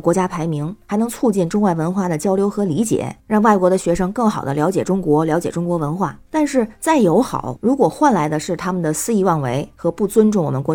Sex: female